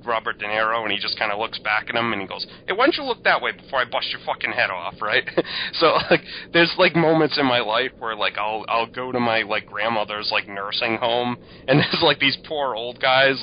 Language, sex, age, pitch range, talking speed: English, male, 30-49, 100-130 Hz, 255 wpm